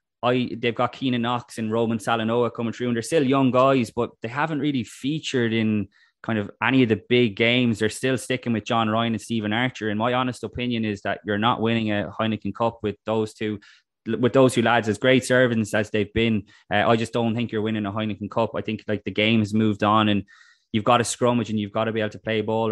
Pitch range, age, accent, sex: 105-120 Hz, 20-39, Irish, male